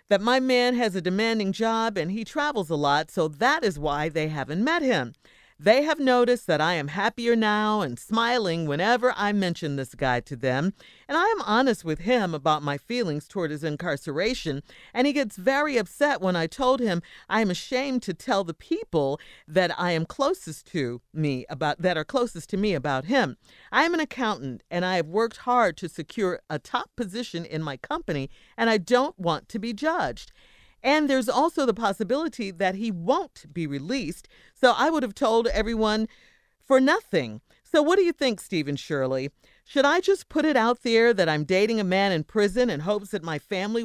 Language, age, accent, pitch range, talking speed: English, 40-59, American, 165-250 Hz, 200 wpm